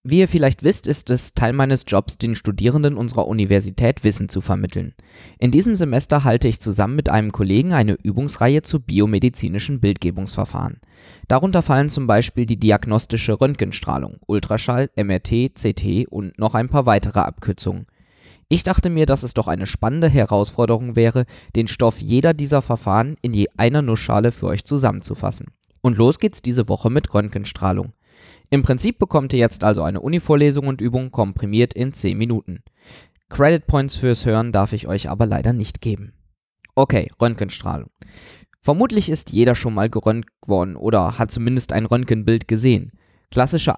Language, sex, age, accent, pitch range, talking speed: German, male, 20-39, German, 105-135 Hz, 160 wpm